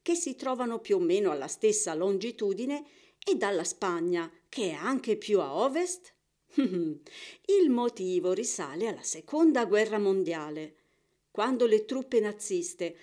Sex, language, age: female, Italian, 50-69